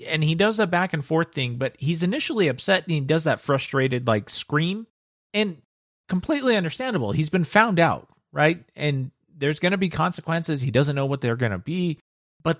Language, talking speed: English, 190 wpm